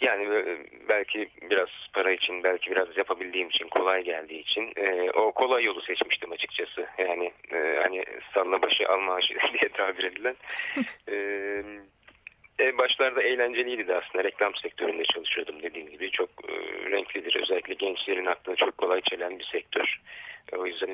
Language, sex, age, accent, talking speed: Turkish, male, 40-59, native, 145 wpm